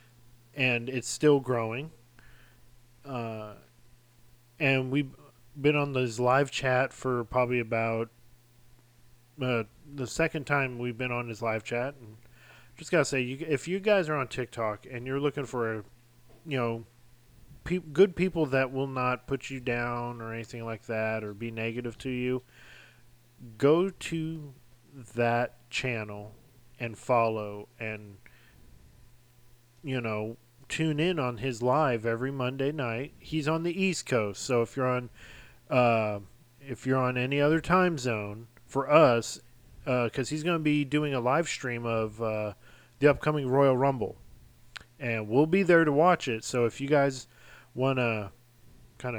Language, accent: English, American